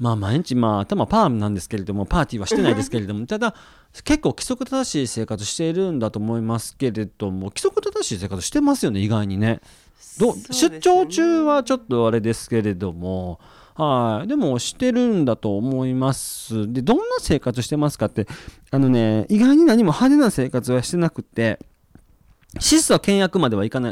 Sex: male